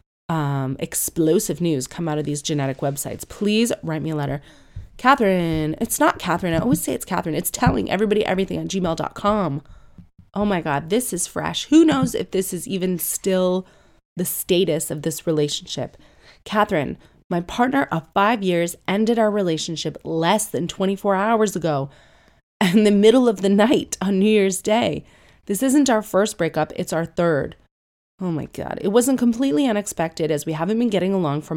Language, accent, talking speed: English, American, 175 wpm